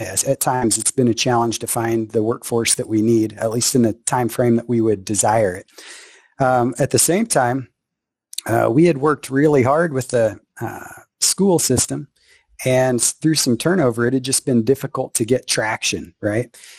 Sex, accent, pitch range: male, American, 115-140 Hz